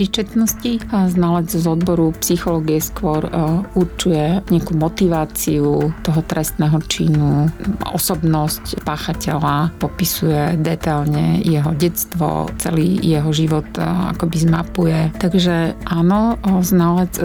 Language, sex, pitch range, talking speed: Slovak, female, 160-185 Hz, 90 wpm